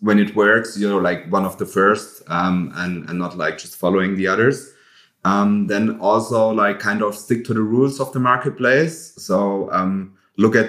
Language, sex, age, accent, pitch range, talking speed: English, male, 30-49, German, 95-110 Hz, 200 wpm